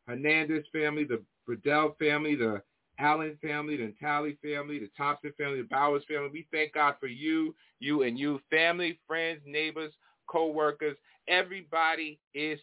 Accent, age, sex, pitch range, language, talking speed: American, 40-59, male, 130-155 Hz, English, 145 wpm